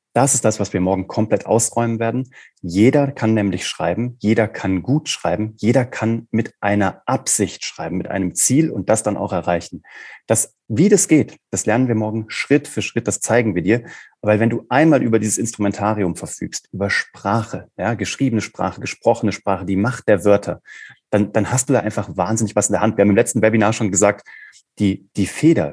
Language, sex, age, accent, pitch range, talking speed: German, male, 30-49, German, 95-115 Hz, 200 wpm